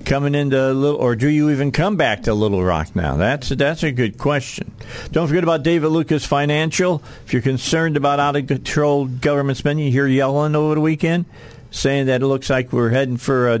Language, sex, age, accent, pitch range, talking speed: English, male, 50-69, American, 115-145 Hz, 205 wpm